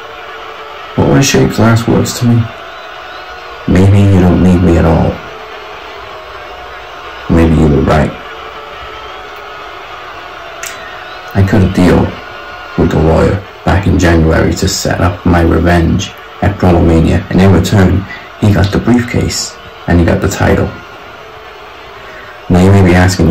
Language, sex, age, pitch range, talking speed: English, male, 30-49, 85-100 Hz, 135 wpm